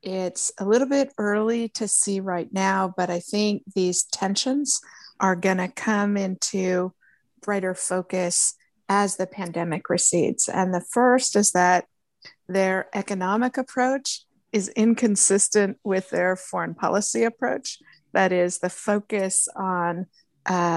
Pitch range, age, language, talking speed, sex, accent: 180-210 Hz, 50-69, English, 130 wpm, female, American